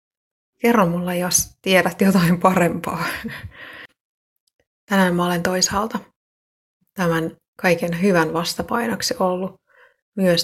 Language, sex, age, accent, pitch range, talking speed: Finnish, female, 30-49, native, 170-190 Hz, 90 wpm